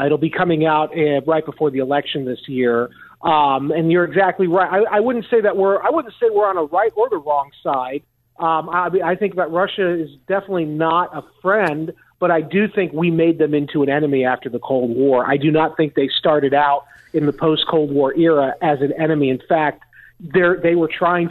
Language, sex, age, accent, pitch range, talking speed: English, male, 40-59, American, 150-185 Hz, 220 wpm